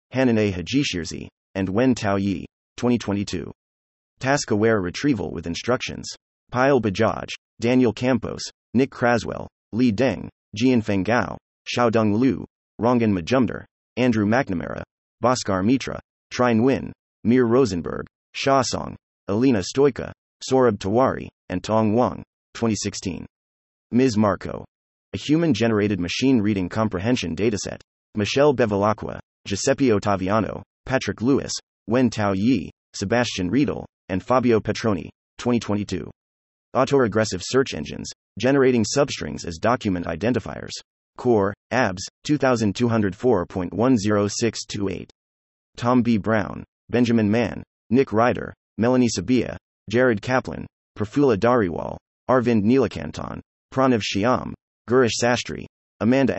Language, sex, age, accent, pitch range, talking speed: English, male, 30-49, American, 95-125 Hz, 105 wpm